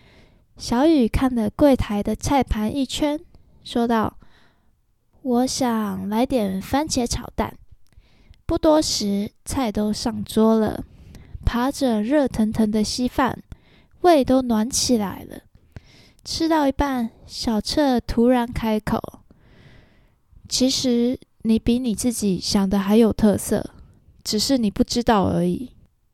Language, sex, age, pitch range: Chinese, female, 20-39, 210-260 Hz